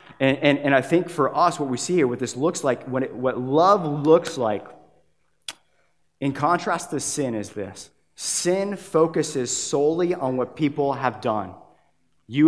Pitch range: 130-170 Hz